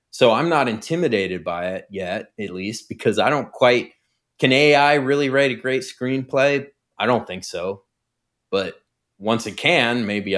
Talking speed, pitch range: 170 wpm, 95-115 Hz